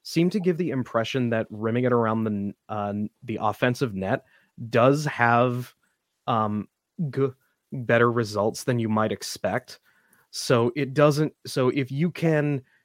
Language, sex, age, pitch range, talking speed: English, male, 20-39, 105-135 Hz, 145 wpm